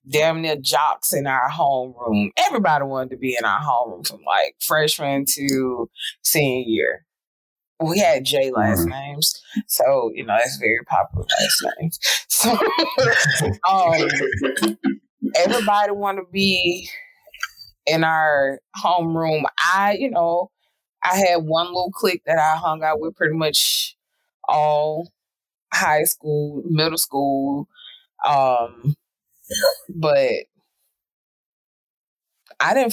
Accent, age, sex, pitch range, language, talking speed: American, 20-39, female, 140-185 Hz, English, 115 wpm